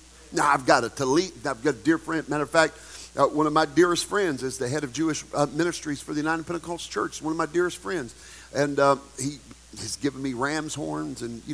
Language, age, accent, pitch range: English, 50-69, American, 120-160 Hz